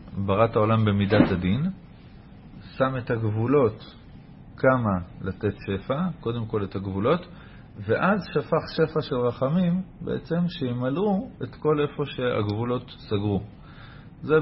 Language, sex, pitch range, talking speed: Hebrew, male, 100-140 Hz, 110 wpm